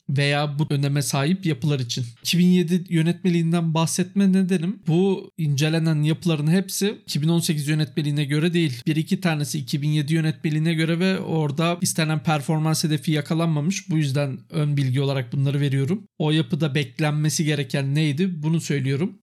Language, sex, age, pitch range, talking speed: Turkish, male, 50-69, 150-180 Hz, 135 wpm